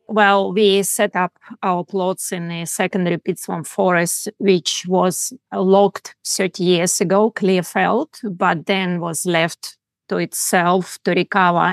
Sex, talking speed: female, 145 wpm